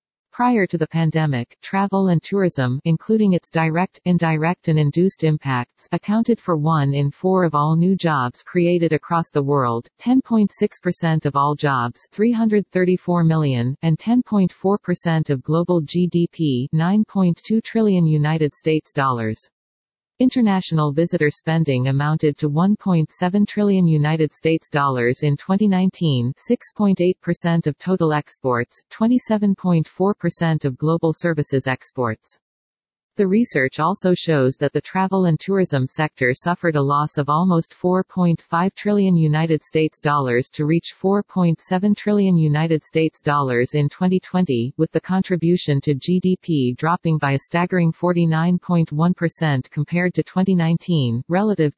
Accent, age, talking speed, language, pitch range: American, 40-59, 120 wpm, English, 150-185 Hz